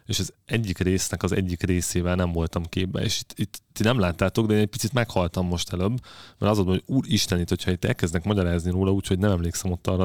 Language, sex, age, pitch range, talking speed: Hungarian, male, 30-49, 90-105 Hz, 215 wpm